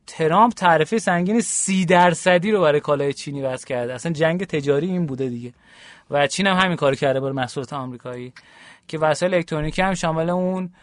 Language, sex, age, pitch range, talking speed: Persian, male, 30-49, 140-185 Hz, 175 wpm